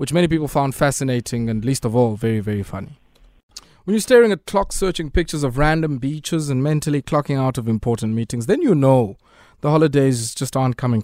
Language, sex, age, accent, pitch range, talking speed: English, male, 20-39, South African, 135-175 Hz, 195 wpm